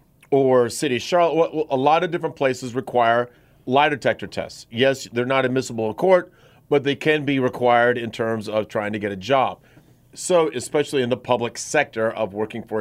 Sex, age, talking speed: male, 40-59, 190 wpm